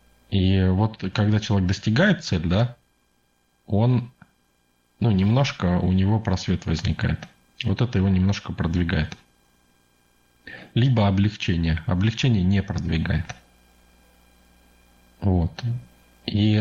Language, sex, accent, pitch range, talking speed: Russian, male, native, 75-105 Hz, 95 wpm